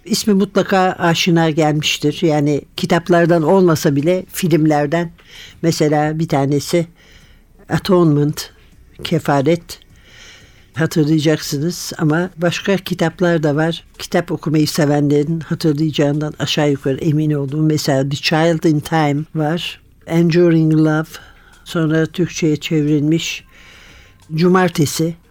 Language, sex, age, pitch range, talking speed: Turkish, male, 60-79, 150-180 Hz, 95 wpm